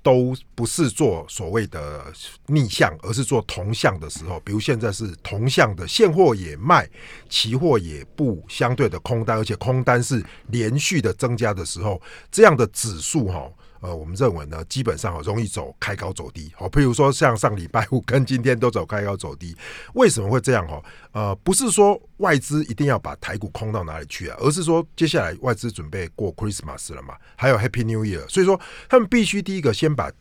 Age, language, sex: 50-69, Chinese, male